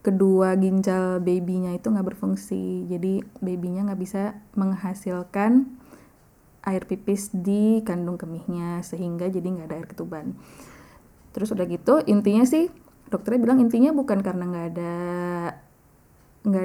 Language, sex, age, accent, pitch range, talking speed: Indonesian, female, 20-39, native, 185-215 Hz, 125 wpm